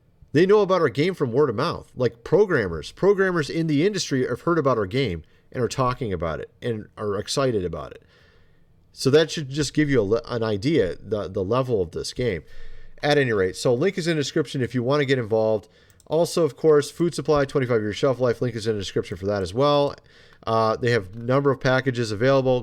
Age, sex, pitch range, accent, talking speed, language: 40-59, male, 105-145 Hz, American, 225 wpm, English